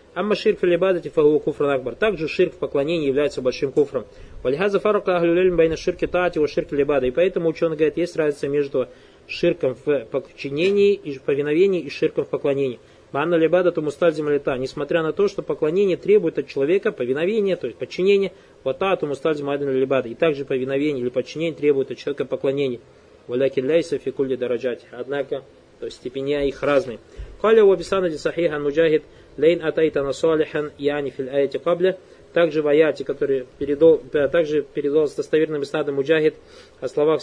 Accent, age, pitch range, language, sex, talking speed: native, 20-39, 145-195 Hz, Russian, male, 115 wpm